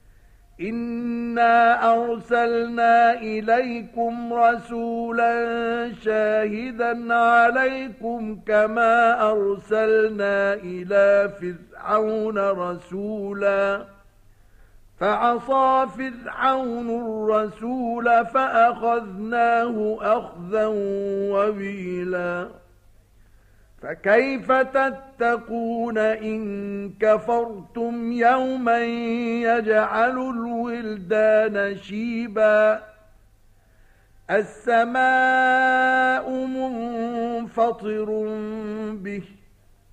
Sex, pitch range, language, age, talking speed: male, 195-235 Hz, Arabic, 50-69, 40 wpm